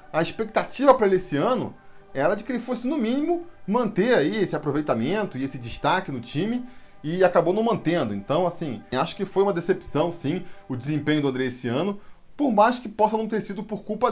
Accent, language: Brazilian, Portuguese